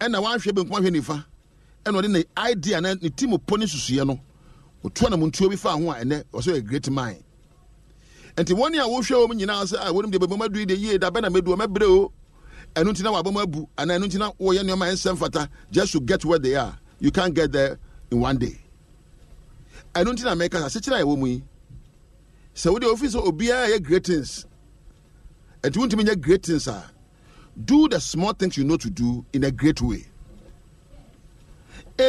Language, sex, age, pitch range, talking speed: English, male, 50-69, 150-210 Hz, 155 wpm